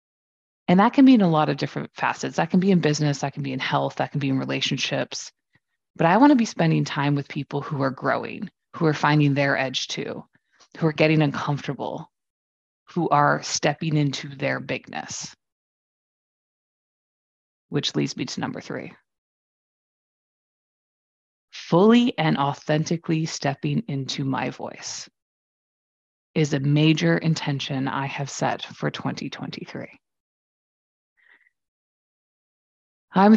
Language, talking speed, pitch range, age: English, 135 wpm, 135-160 Hz, 30-49